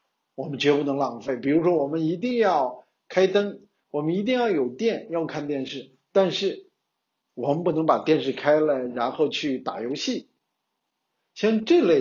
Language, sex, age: Chinese, male, 50-69